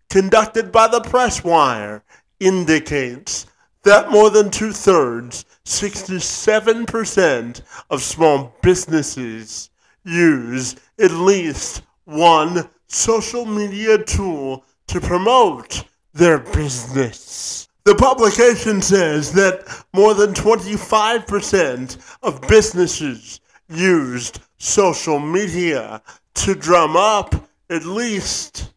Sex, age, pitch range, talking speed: male, 50-69, 145-205 Hz, 90 wpm